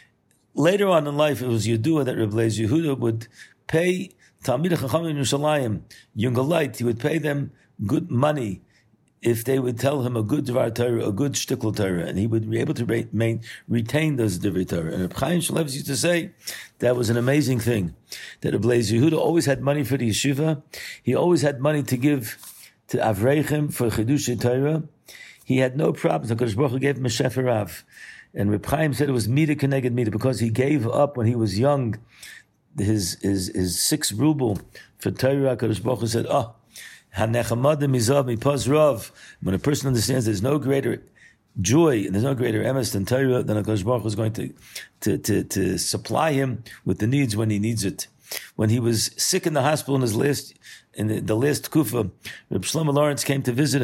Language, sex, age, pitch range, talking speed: English, male, 60-79, 110-145 Hz, 185 wpm